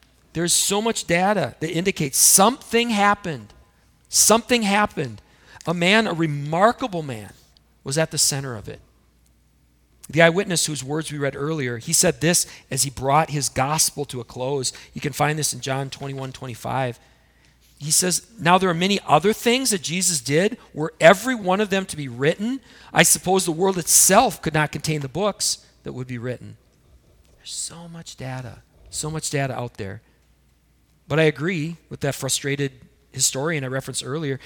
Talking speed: 170 wpm